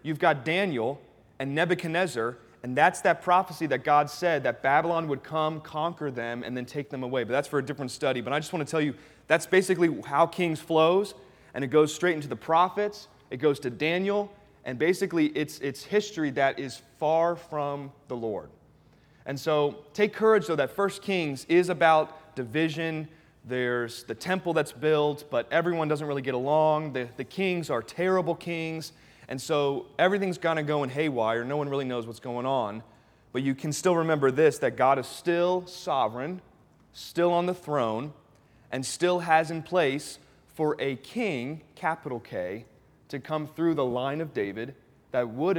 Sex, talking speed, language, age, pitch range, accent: male, 185 wpm, English, 30-49, 130-165 Hz, American